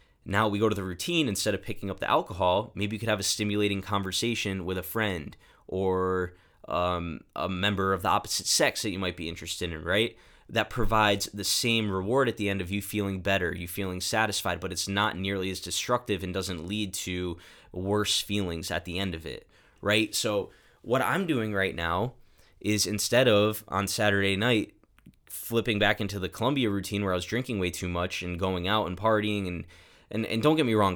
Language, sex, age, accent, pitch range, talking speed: English, male, 20-39, American, 95-110 Hz, 205 wpm